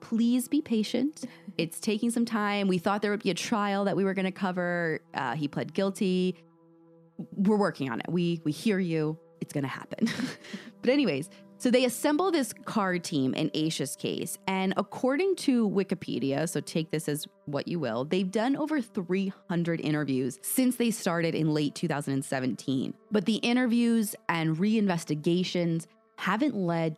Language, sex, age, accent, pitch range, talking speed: English, female, 20-39, American, 165-225 Hz, 170 wpm